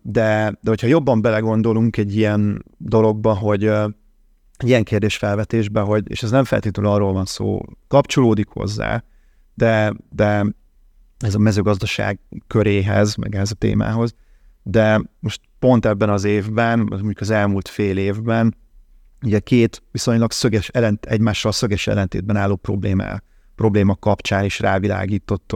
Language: Hungarian